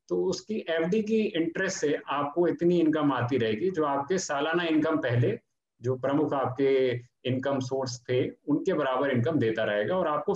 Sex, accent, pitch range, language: male, native, 125-160 Hz, Hindi